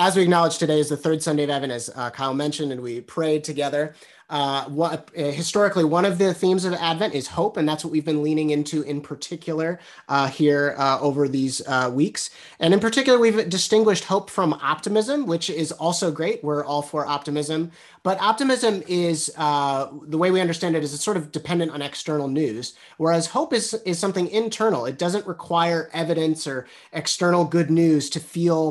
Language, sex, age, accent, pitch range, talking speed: English, male, 30-49, American, 140-175 Hz, 195 wpm